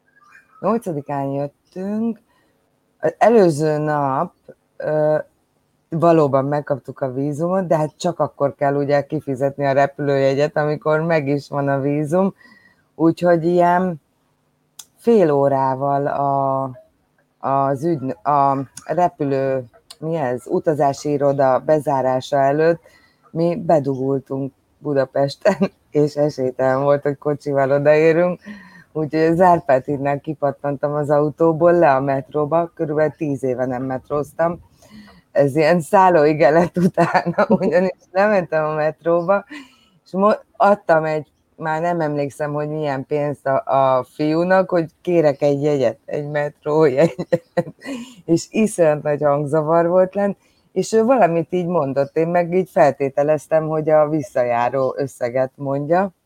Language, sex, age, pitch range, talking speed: Hungarian, female, 20-39, 140-175 Hz, 115 wpm